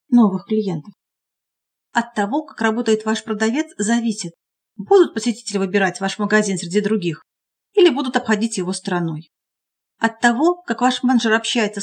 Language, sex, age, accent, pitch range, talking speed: Russian, female, 40-59, native, 190-245 Hz, 135 wpm